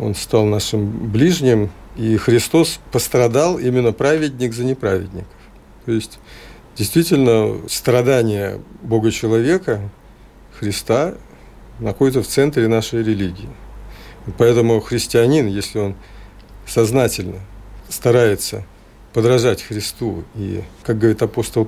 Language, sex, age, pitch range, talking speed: Russian, male, 50-69, 105-125 Hz, 95 wpm